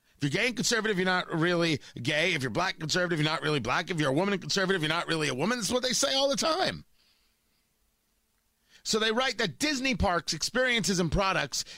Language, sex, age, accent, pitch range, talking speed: English, male, 40-59, American, 165-240 Hz, 230 wpm